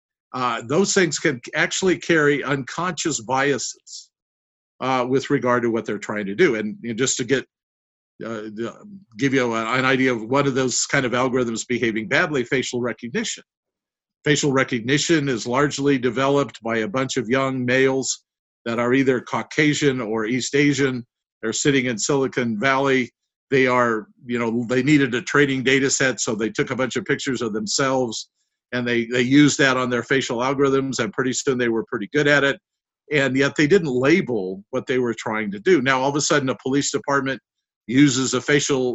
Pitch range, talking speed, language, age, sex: 125-145 Hz, 185 wpm, English, 50-69, male